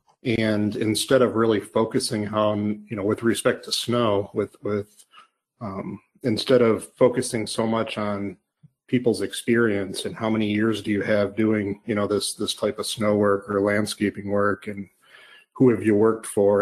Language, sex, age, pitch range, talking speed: English, male, 40-59, 100-115 Hz, 175 wpm